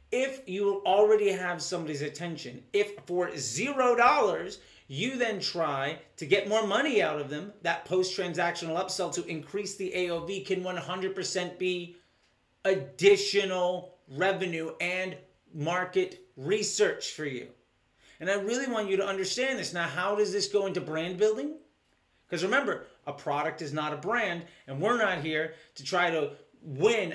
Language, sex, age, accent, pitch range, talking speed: English, male, 30-49, American, 165-215 Hz, 150 wpm